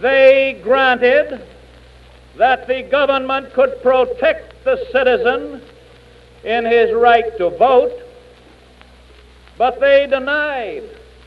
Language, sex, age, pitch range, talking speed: English, male, 60-79, 220-275 Hz, 90 wpm